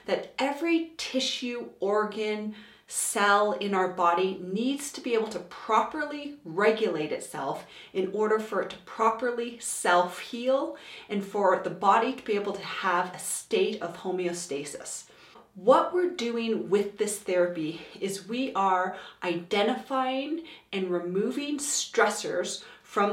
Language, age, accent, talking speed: English, 30-49, American, 130 wpm